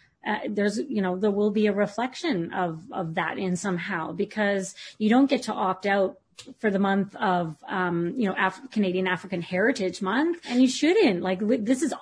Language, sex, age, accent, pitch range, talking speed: English, female, 30-49, American, 180-220 Hz, 190 wpm